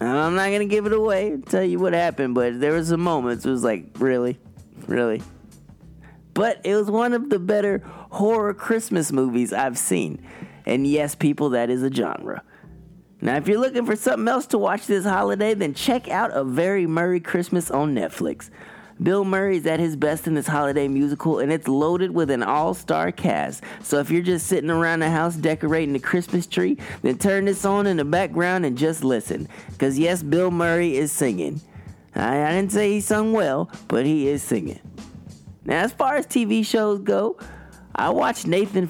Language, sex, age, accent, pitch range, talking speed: English, male, 20-39, American, 145-190 Hz, 195 wpm